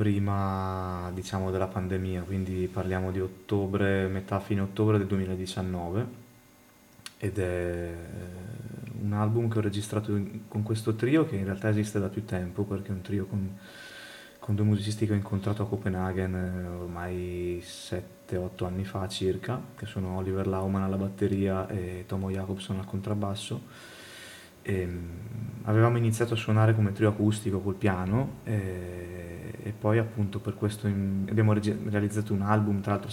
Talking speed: 150 wpm